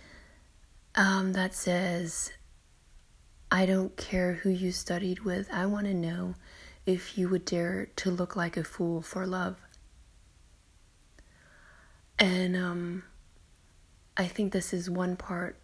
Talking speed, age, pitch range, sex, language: 125 wpm, 30-49, 165-185 Hz, female, English